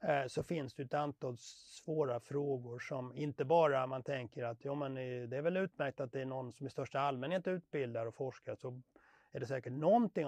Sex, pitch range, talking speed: male, 120-155 Hz, 200 wpm